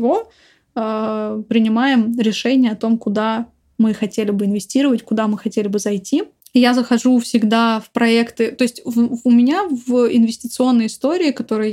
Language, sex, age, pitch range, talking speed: Russian, female, 20-39, 225-250 Hz, 145 wpm